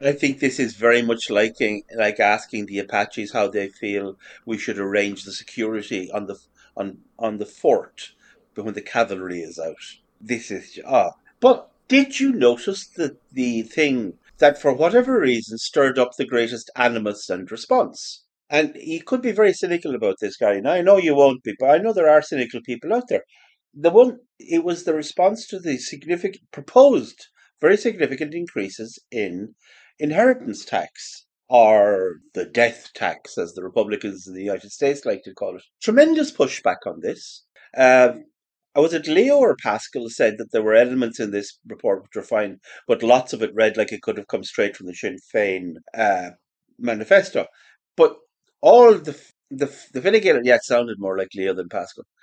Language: English